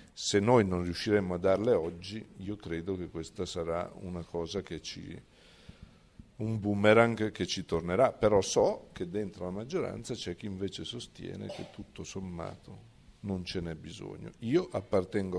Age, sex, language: 50-69, male, Italian